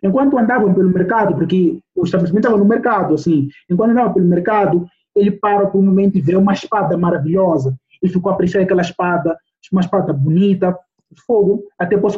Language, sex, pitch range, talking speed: Portuguese, male, 155-190 Hz, 175 wpm